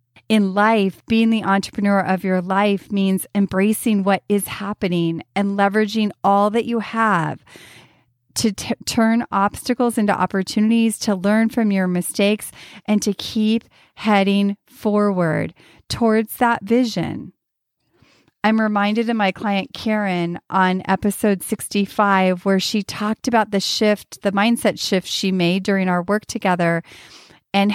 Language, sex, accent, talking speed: English, female, American, 135 wpm